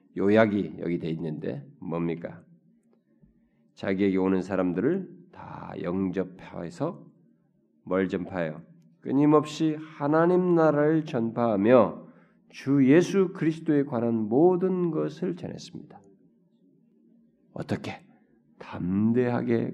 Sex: male